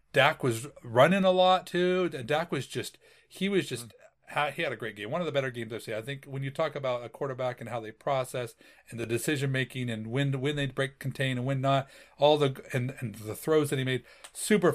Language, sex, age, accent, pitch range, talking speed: English, male, 40-59, American, 125-160 Hz, 240 wpm